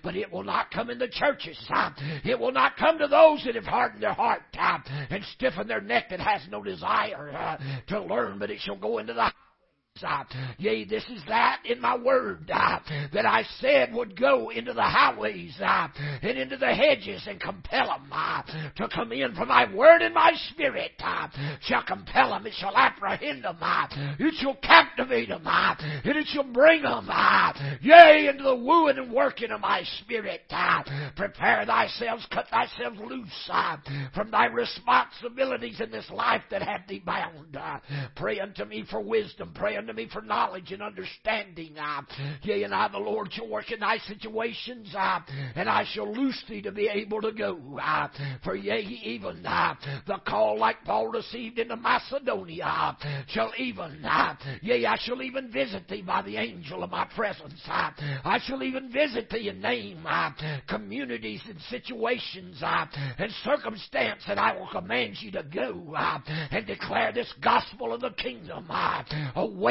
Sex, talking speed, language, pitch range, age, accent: male, 175 wpm, English, 155-255 Hz, 50-69, American